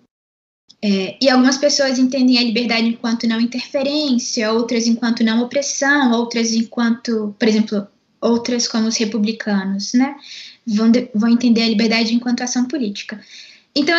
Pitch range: 220-275 Hz